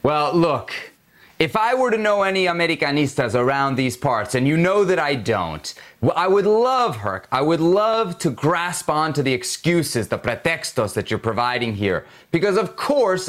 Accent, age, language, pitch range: American, 30-49, English, 135-190 Hz